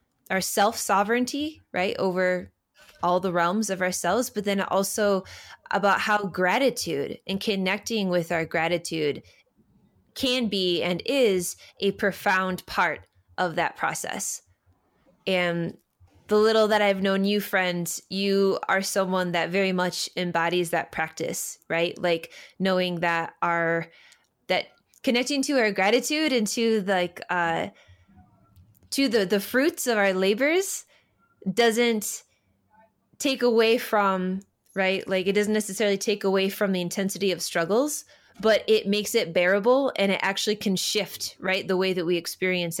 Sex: female